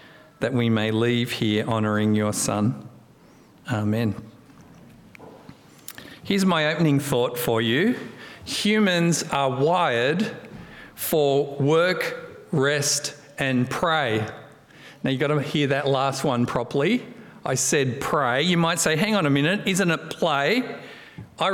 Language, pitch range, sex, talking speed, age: English, 135-165 Hz, male, 130 wpm, 50-69